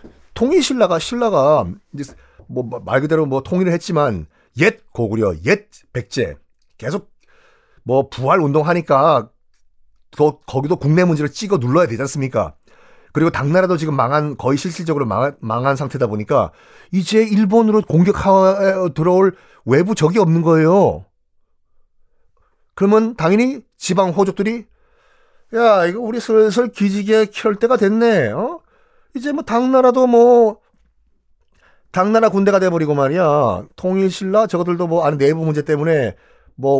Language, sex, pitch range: Korean, male, 135-205 Hz